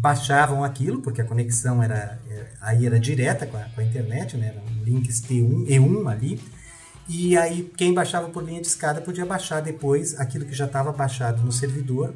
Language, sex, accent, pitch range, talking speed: Portuguese, male, Brazilian, 125-170 Hz, 200 wpm